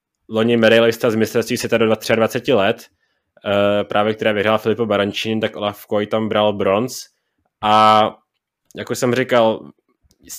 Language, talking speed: Czech, 135 wpm